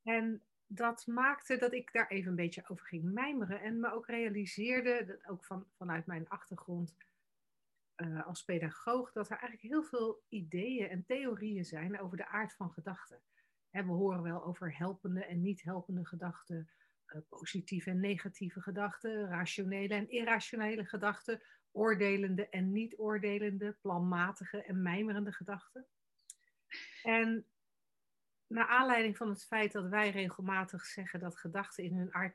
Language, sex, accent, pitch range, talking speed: Dutch, female, Dutch, 180-225 Hz, 145 wpm